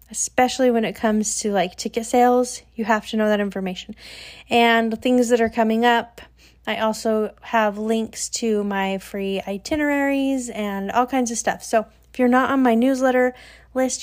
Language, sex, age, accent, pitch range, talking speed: English, female, 30-49, American, 215-255 Hz, 175 wpm